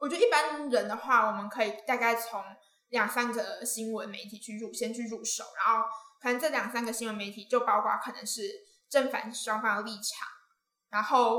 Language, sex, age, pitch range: Chinese, female, 10-29, 220-255 Hz